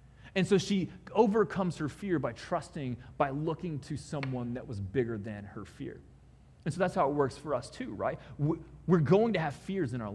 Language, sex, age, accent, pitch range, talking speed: English, male, 30-49, American, 130-185 Hz, 205 wpm